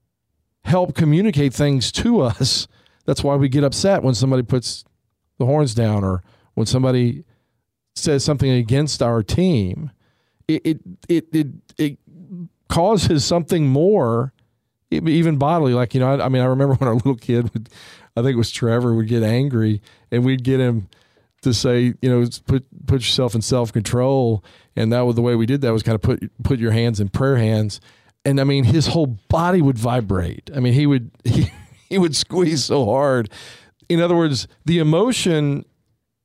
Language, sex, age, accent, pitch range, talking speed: English, male, 40-59, American, 115-150 Hz, 180 wpm